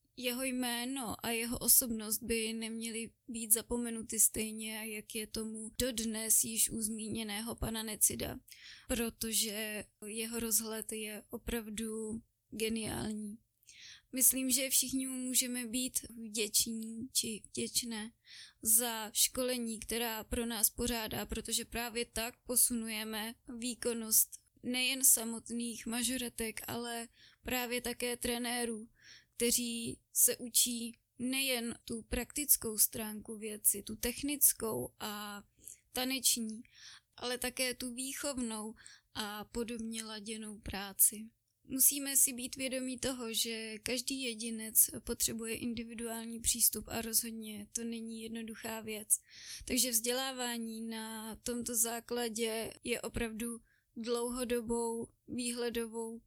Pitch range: 220-245 Hz